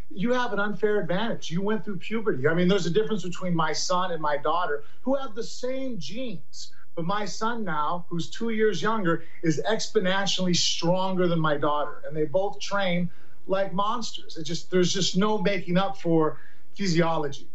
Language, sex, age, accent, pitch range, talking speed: English, male, 40-59, American, 170-215 Hz, 185 wpm